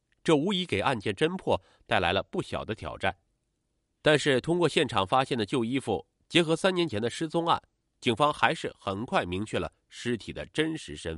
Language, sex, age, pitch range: Chinese, male, 30-49, 100-160 Hz